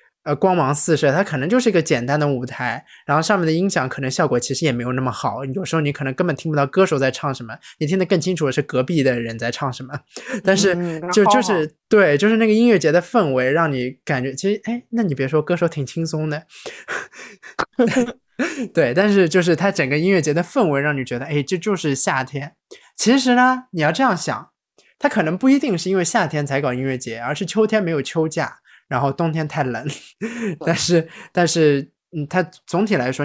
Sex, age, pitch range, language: male, 20-39, 135-185 Hz, Chinese